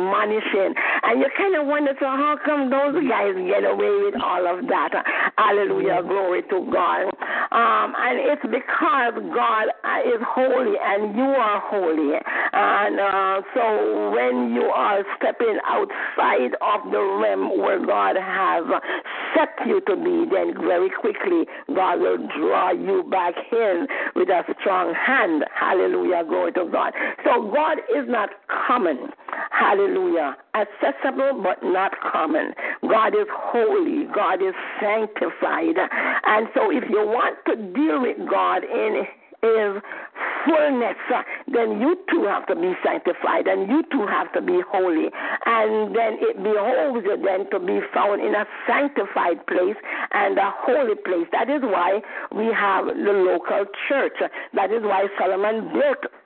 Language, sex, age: English, female, 50-69